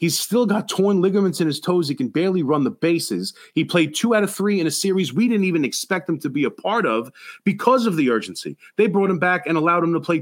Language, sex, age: English, male, 30-49